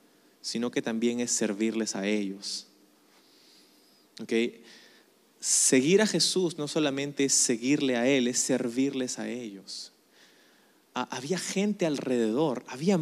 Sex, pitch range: male, 115-155 Hz